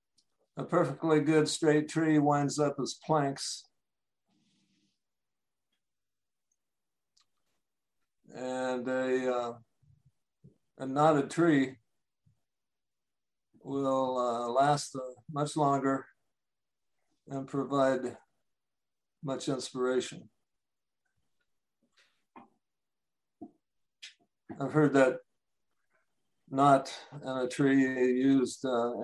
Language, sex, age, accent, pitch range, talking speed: English, male, 50-69, American, 130-155 Hz, 70 wpm